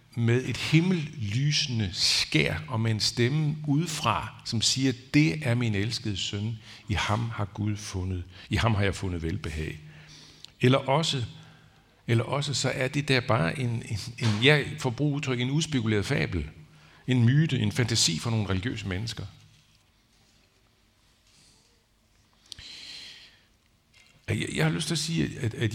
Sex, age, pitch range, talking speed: male, 60-79, 105-145 Hz, 145 wpm